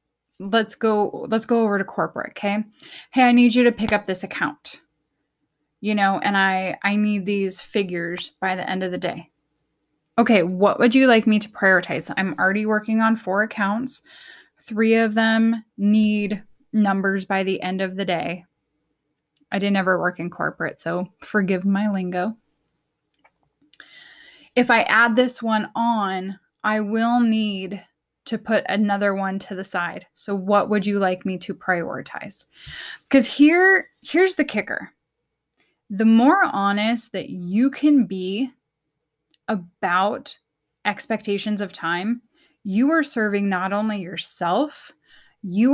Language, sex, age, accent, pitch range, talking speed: English, female, 10-29, American, 190-230 Hz, 150 wpm